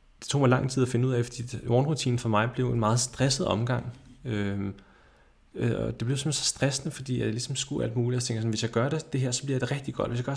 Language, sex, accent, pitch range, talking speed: Danish, male, native, 105-130 Hz, 280 wpm